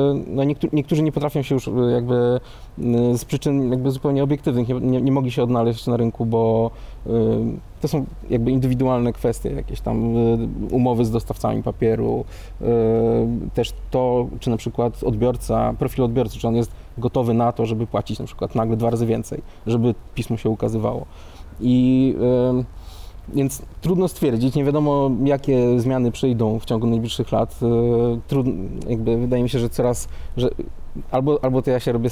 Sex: male